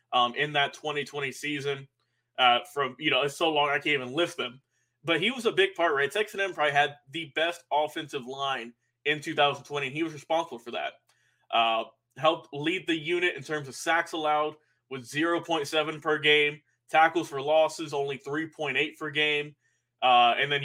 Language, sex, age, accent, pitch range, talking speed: English, male, 20-39, American, 135-165 Hz, 185 wpm